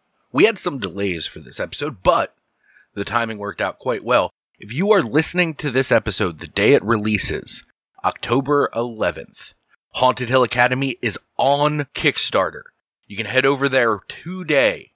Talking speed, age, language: 155 wpm, 30-49, English